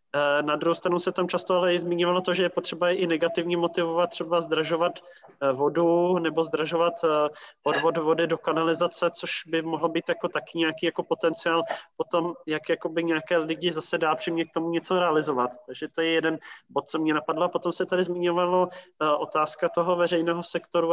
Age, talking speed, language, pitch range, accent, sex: 20-39, 180 wpm, Czech, 160-175 Hz, native, male